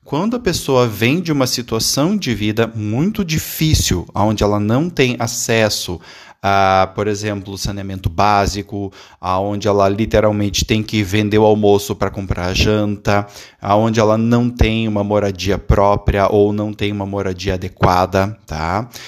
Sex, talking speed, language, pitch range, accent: male, 150 wpm, Portuguese, 100-120 Hz, Brazilian